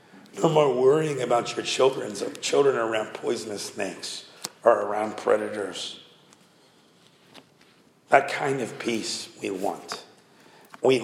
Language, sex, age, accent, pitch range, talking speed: English, male, 50-69, American, 135-200 Hz, 115 wpm